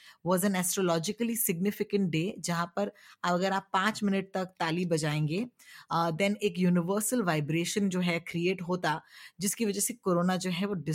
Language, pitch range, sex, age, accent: Hindi, 165-200 Hz, female, 20-39, native